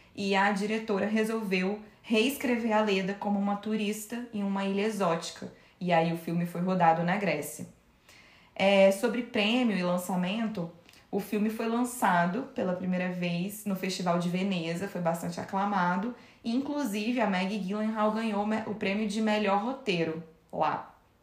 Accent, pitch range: Brazilian, 175-215 Hz